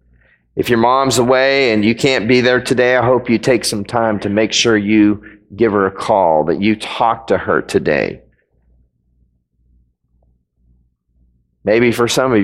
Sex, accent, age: male, American, 40-59